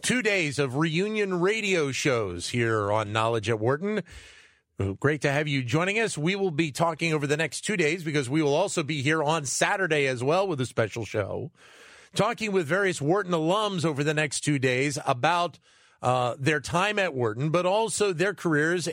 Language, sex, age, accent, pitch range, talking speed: English, male, 40-59, American, 130-175 Hz, 190 wpm